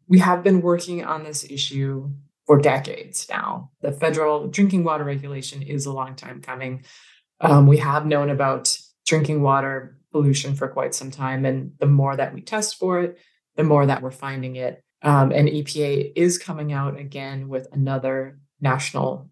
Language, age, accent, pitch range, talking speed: English, 20-39, American, 140-160 Hz, 175 wpm